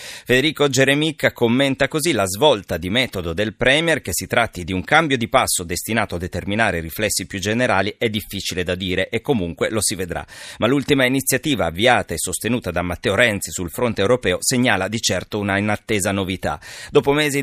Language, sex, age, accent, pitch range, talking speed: Italian, male, 40-59, native, 95-130 Hz, 185 wpm